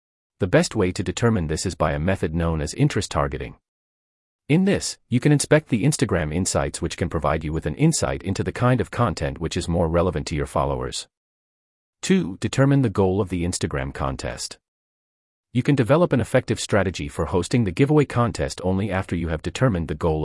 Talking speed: 200 wpm